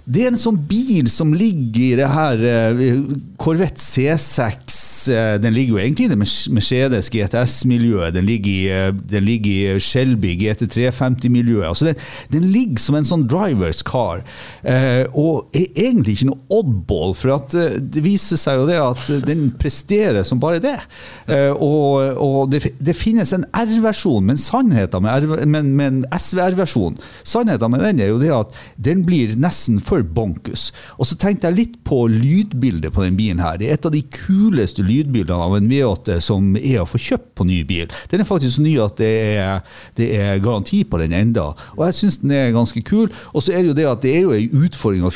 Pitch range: 105-150 Hz